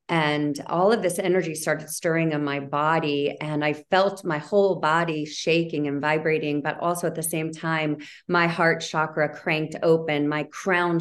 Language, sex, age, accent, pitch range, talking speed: English, female, 40-59, American, 145-170 Hz, 175 wpm